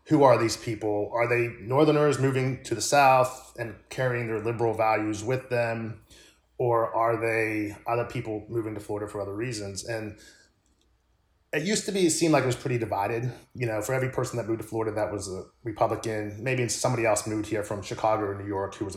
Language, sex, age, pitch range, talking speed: English, male, 30-49, 110-130 Hz, 210 wpm